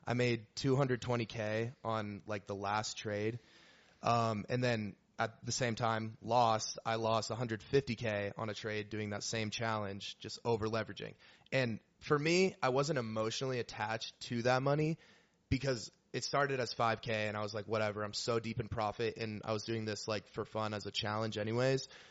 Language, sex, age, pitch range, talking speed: English, male, 20-39, 110-135 Hz, 175 wpm